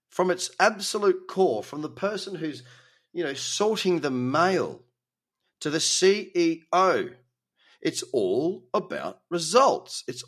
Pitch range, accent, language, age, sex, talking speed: 120-190 Hz, Australian, English, 30-49, male, 125 wpm